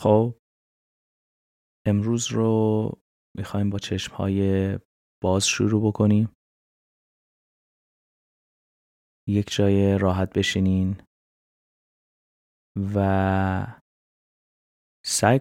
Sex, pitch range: male, 90-105 Hz